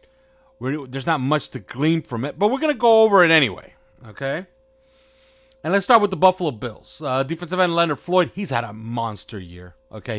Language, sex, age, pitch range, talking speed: English, male, 30-49, 115-175 Hz, 205 wpm